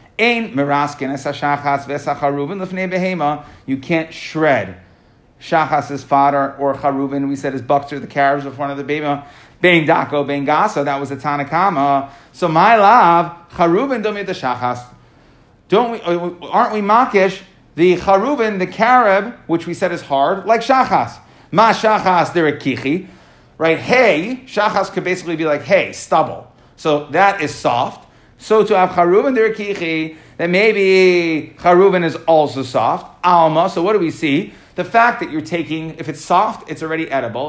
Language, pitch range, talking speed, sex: English, 145-195 Hz, 145 wpm, male